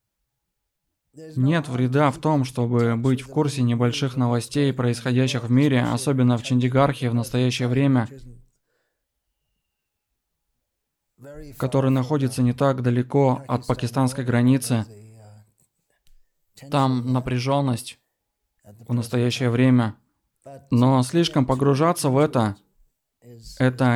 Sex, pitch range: male, 125-145 Hz